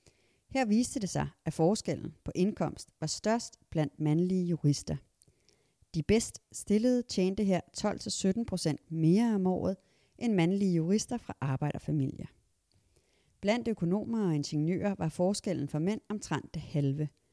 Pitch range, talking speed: 150-205 Hz, 130 wpm